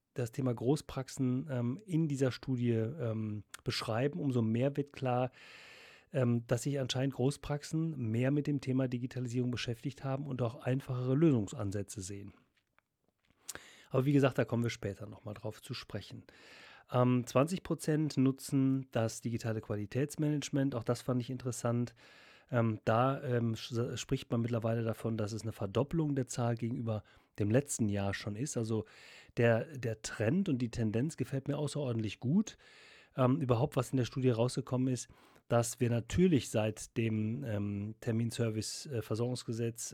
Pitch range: 110-135 Hz